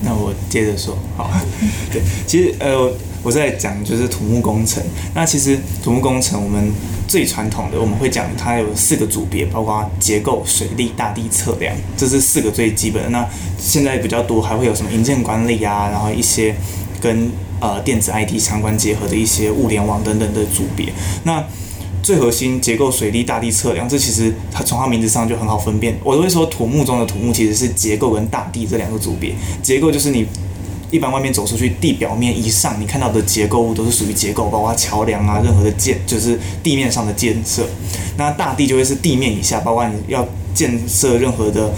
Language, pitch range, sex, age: Chinese, 100-120 Hz, male, 20-39